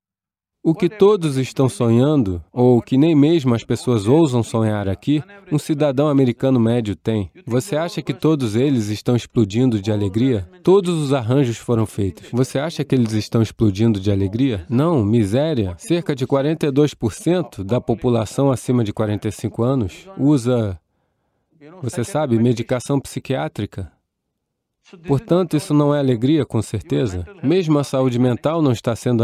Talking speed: 150 wpm